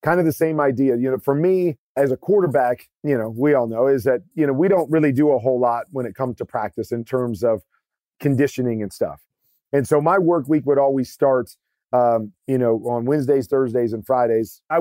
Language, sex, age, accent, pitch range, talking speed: English, male, 40-59, American, 120-140 Hz, 225 wpm